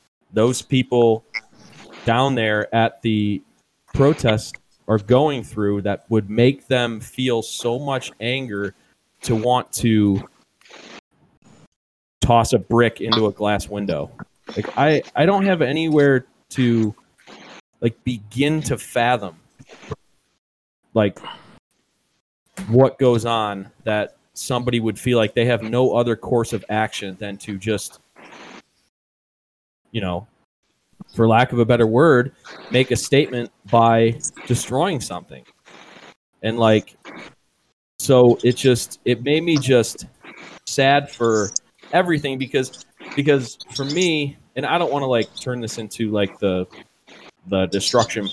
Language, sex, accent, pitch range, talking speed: English, male, American, 105-130 Hz, 125 wpm